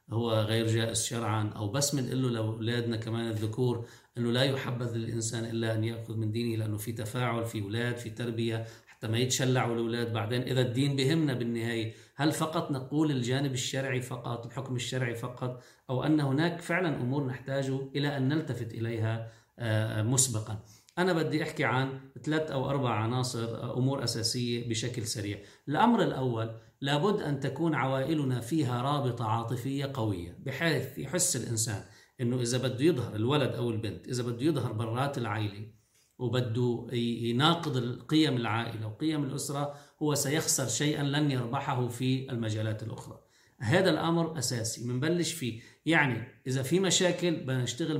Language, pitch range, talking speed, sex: Arabic, 115-145 Hz, 145 wpm, male